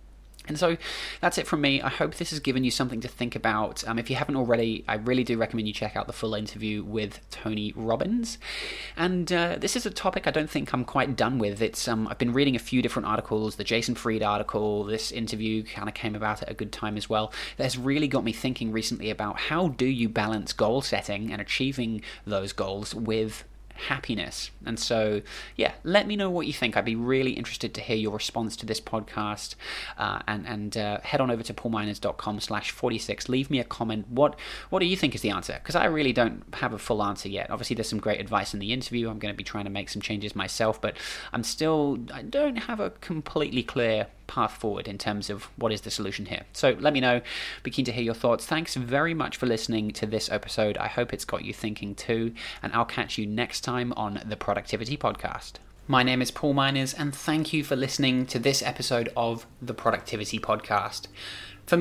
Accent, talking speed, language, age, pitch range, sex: British, 225 wpm, English, 20-39, 105-135 Hz, male